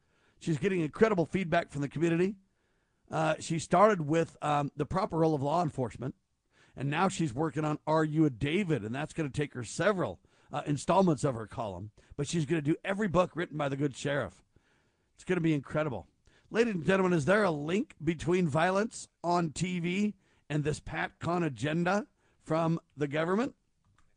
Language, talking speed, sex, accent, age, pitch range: English, 185 wpm, male, American, 50-69, 145-175 Hz